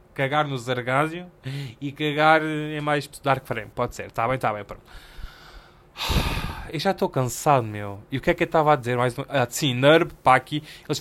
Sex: male